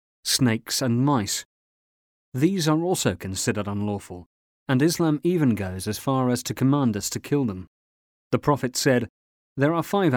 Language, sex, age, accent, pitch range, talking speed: English, male, 40-59, British, 95-130 Hz, 160 wpm